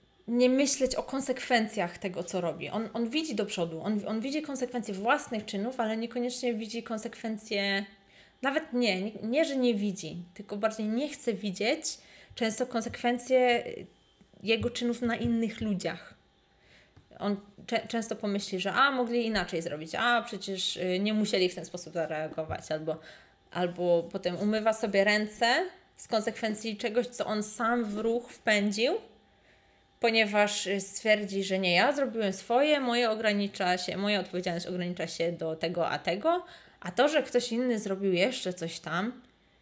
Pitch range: 185-240 Hz